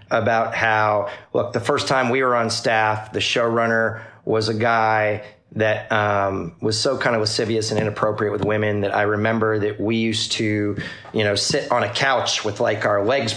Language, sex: English, male